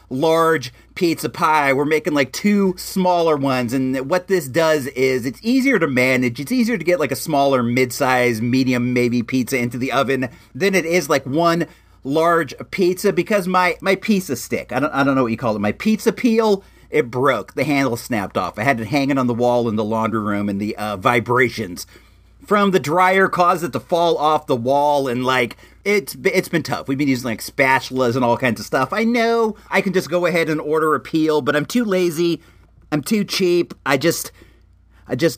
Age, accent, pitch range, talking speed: 40-59, American, 125-180 Hz, 215 wpm